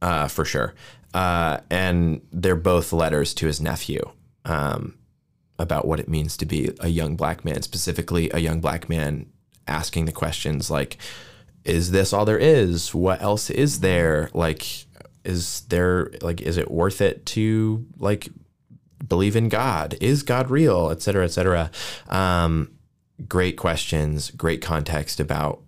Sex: male